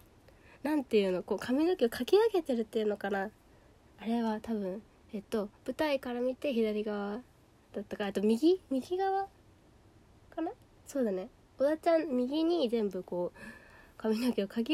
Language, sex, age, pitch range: Japanese, female, 20-39, 185-270 Hz